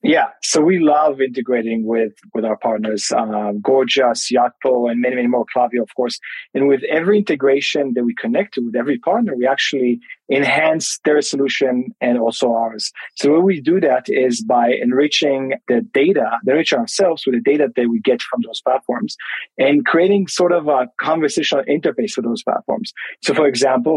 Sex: male